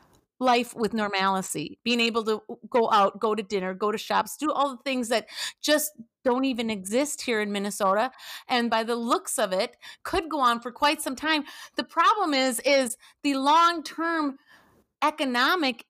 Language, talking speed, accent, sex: English, 175 wpm, American, female